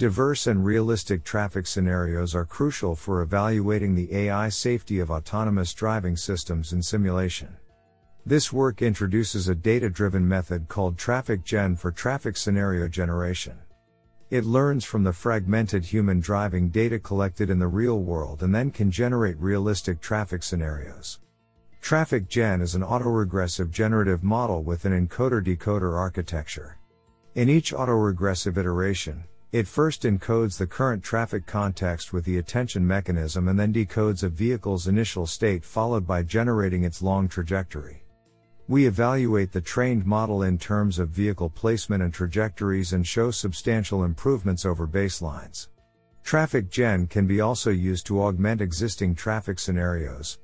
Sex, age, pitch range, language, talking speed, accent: male, 50-69, 90-115 Hz, English, 145 wpm, American